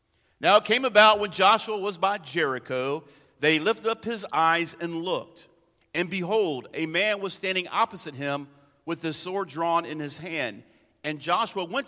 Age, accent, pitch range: 50-69, American, 145-205 Hz